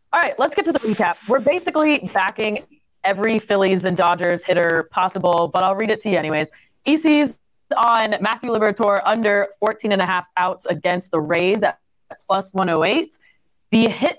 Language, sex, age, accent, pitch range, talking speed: English, female, 20-39, American, 185-230 Hz, 150 wpm